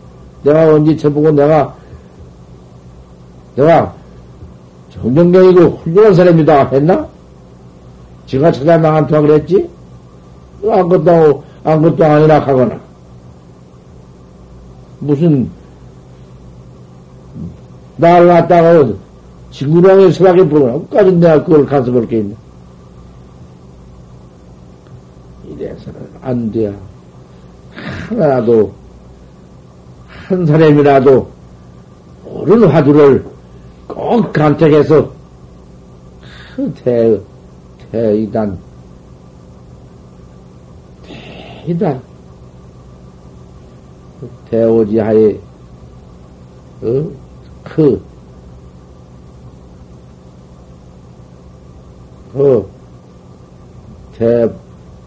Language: Korean